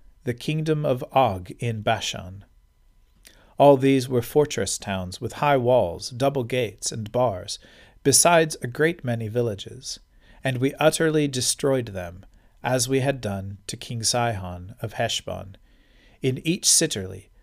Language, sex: English, male